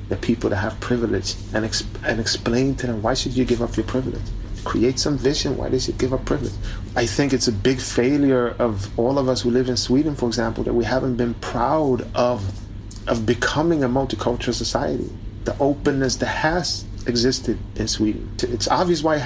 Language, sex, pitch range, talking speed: Finnish, male, 105-140 Hz, 200 wpm